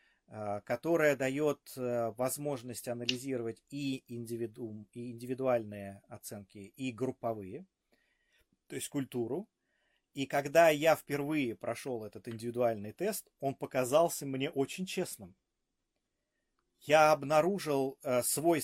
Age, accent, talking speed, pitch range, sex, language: 30-49, native, 95 wpm, 120-165 Hz, male, Russian